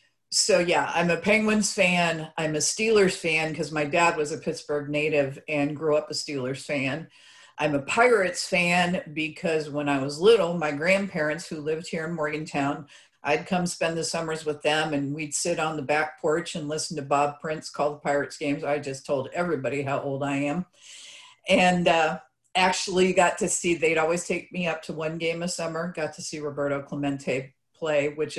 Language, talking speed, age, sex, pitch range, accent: English, 195 wpm, 50-69, female, 150-180 Hz, American